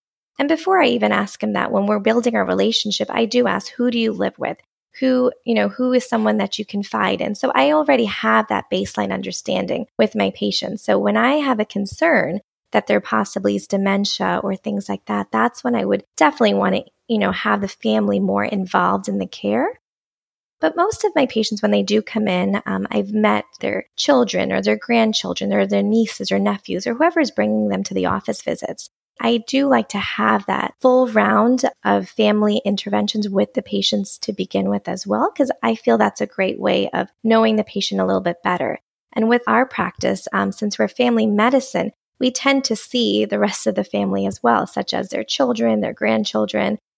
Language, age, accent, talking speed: English, 20-39, American, 210 wpm